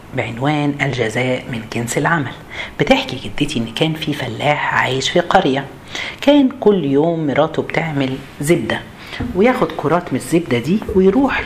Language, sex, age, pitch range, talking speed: Arabic, female, 50-69, 135-190 Hz, 135 wpm